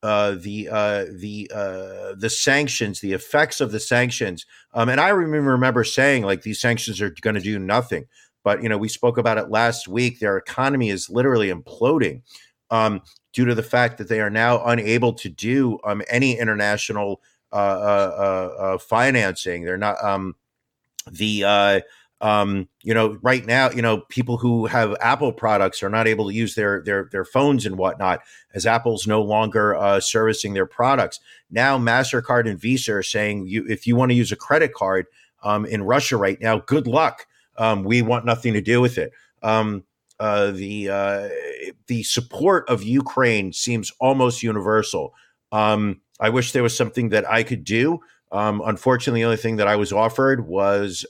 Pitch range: 105-120 Hz